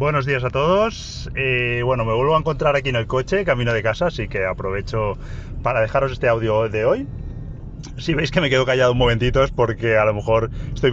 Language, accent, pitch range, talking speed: Spanish, Spanish, 105-130 Hz, 220 wpm